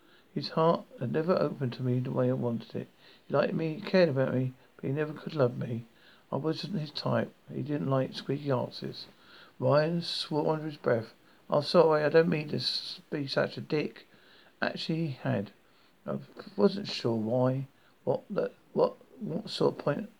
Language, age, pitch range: English, 50-69, 130-175 Hz